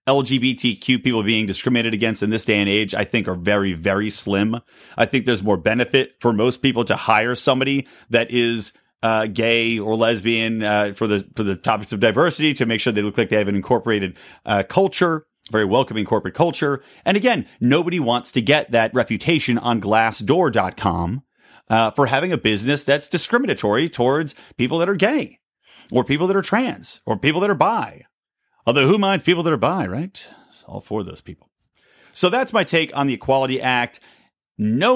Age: 30-49